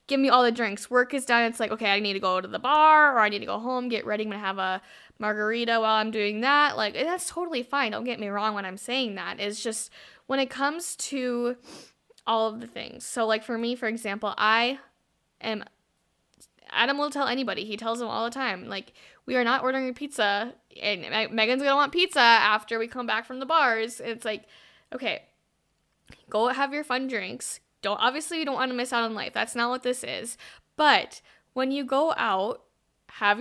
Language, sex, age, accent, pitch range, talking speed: English, female, 10-29, American, 215-265 Hz, 215 wpm